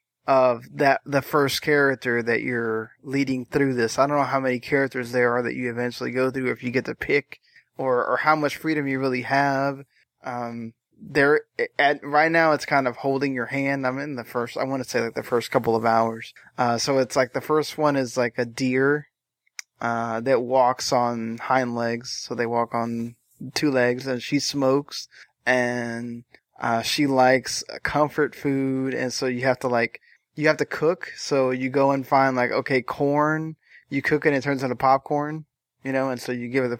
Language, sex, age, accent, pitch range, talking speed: English, male, 20-39, American, 125-145 Hz, 210 wpm